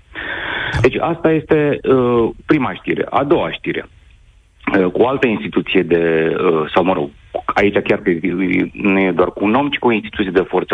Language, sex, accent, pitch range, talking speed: Romanian, male, native, 100-145 Hz, 185 wpm